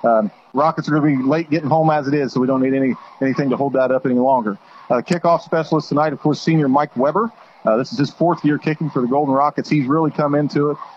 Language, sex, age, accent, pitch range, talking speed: English, male, 40-59, American, 140-205 Hz, 270 wpm